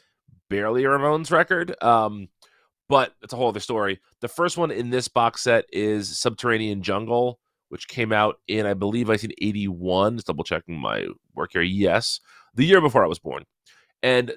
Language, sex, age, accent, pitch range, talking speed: English, male, 30-49, American, 95-115 Hz, 175 wpm